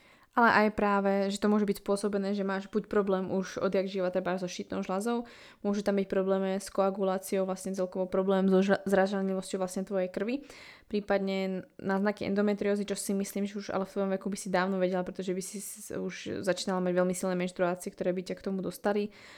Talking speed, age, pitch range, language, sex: 200 wpm, 20-39, 180-200 Hz, Slovak, female